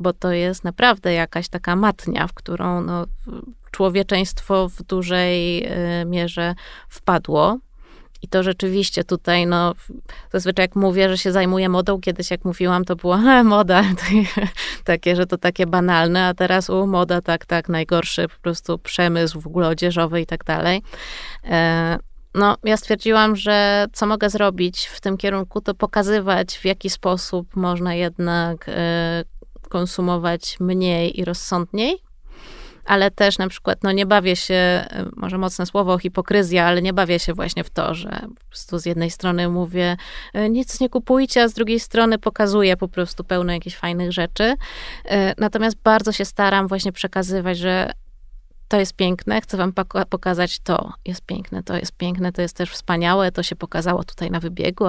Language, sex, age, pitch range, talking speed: Polish, female, 20-39, 175-200 Hz, 160 wpm